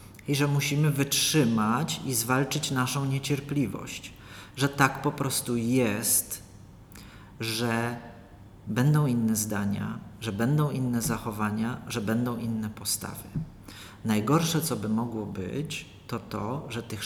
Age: 40-59